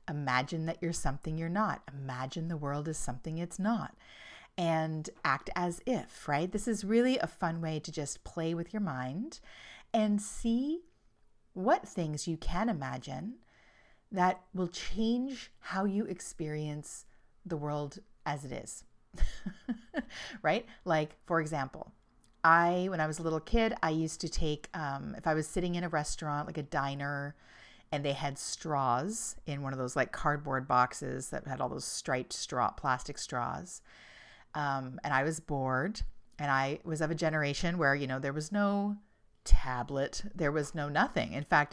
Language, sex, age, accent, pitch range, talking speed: English, female, 40-59, American, 145-205 Hz, 170 wpm